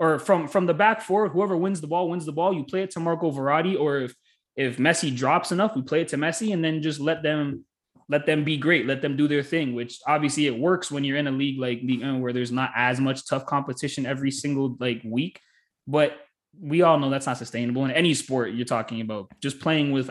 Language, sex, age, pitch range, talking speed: English, male, 20-39, 120-155 Hz, 240 wpm